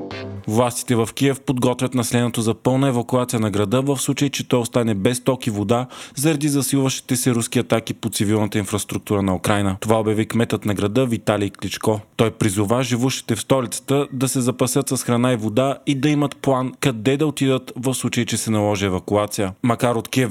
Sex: male